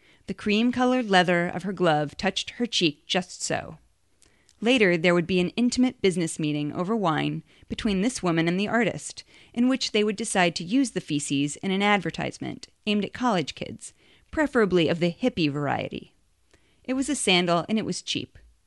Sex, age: female, 30-49